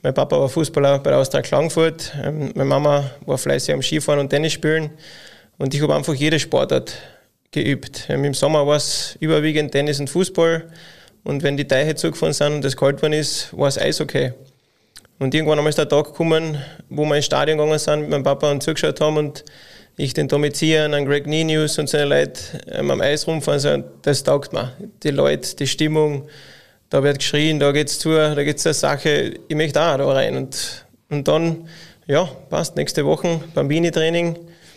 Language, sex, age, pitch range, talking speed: German, male, 20-39, 140-155 Hz, 190 wpm